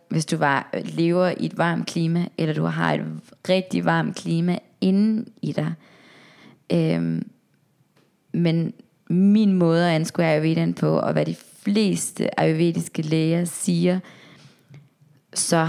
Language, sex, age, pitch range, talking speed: English, female, 20-39, 155-185 Hz, 130 wpm